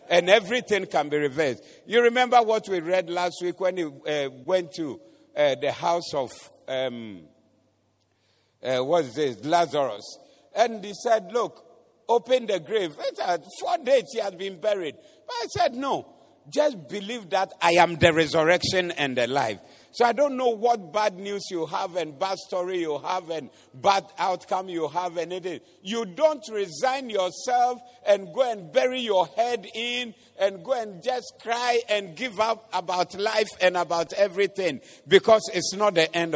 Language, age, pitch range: English, 50-69, 170-230 Hz